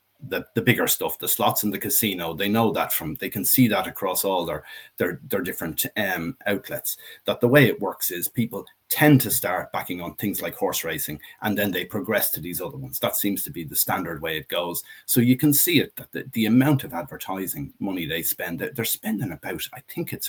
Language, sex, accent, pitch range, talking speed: English, male, Irish, 90-130 Hz, 230 wpm